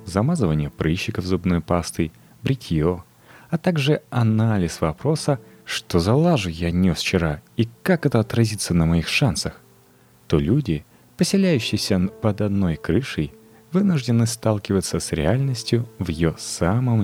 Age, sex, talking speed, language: 30-49, male, 125 wpm, Russian